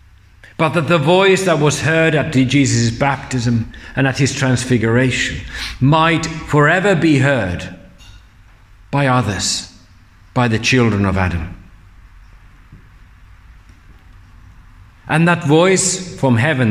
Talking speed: 110 wpm